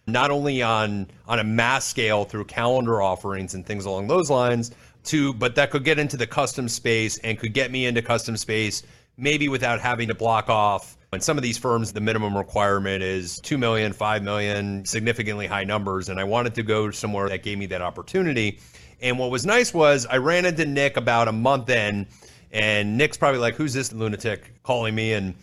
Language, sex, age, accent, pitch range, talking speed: English, male, 30-49, American, 100-130 Hz, 205 wpm